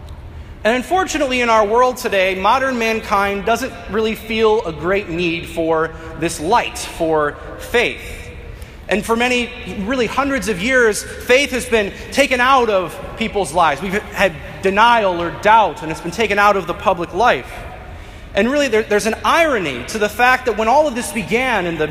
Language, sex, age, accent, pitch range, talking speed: English, male, 30-49, American, 185-245 Hz, 175 wpm